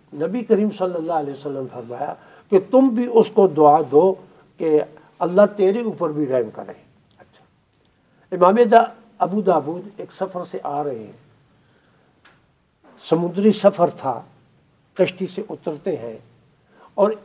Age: 60-79